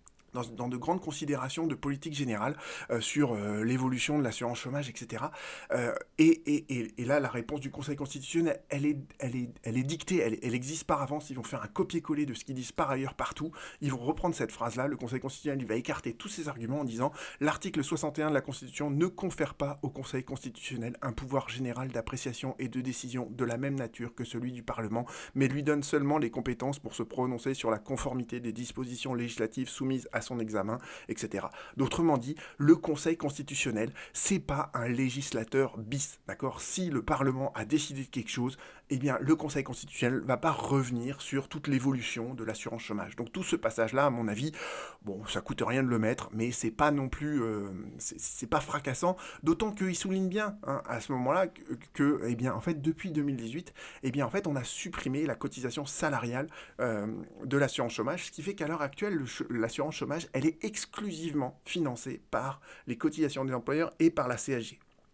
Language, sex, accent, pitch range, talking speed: French, male, French, 120-150 Hz, 210 wpm